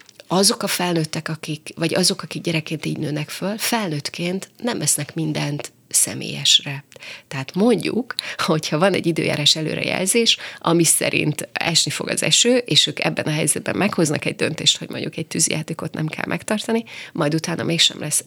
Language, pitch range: Hungarian, 155-195 Hz